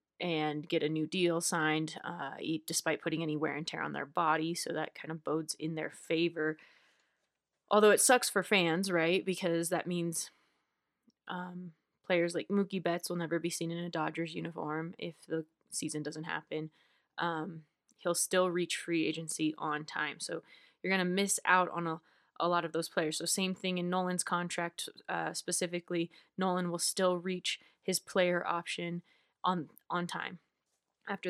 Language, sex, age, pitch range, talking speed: English, female, 20-39, 165-185 Hz, 175 wpm